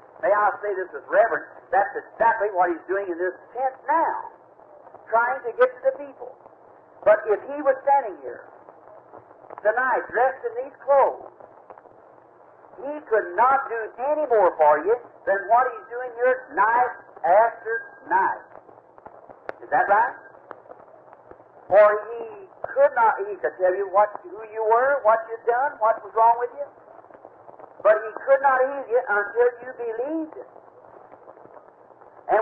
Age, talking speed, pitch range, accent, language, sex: 50-69, 150 wpm, 220-295 Hz, American, English, male